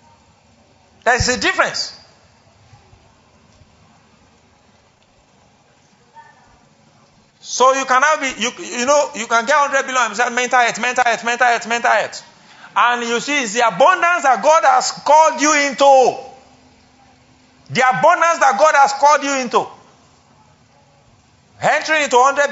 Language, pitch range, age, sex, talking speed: English, 180-265 Hz, 50-69, male, 130 wpm